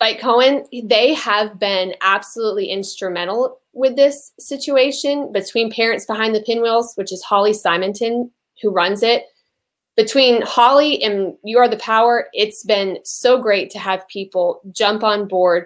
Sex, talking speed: female, 150 wpm